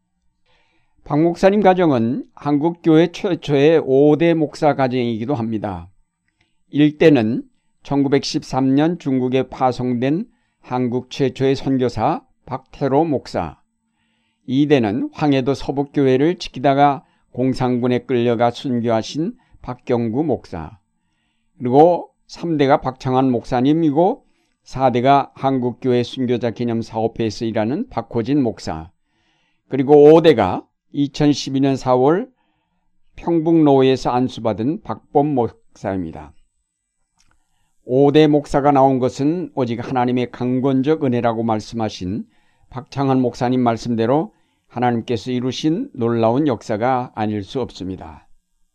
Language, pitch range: Korean, 120-145 Hz